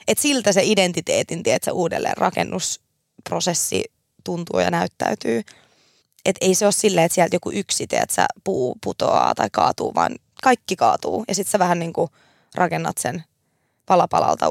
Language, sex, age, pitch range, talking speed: Finnish, female, 20-39, 185-220 Hz, 150 wpm